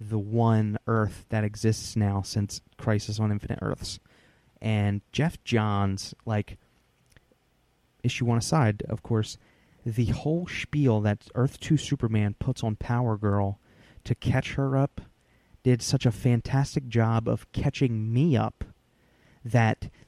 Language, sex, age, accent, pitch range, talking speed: English, male, 30-49, American, 105-125 Hz, 130 wpm